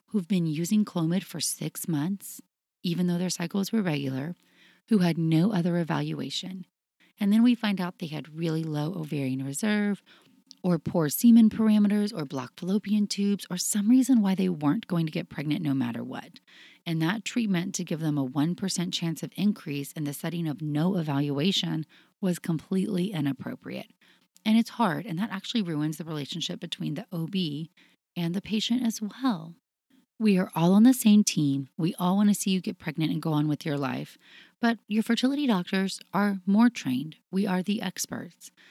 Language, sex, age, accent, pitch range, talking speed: English, female, 30-49, American, 160-205 Hz, 185 wpm